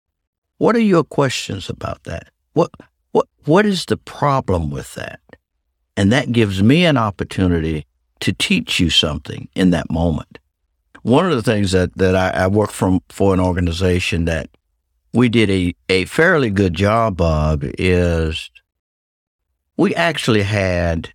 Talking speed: 150 wpm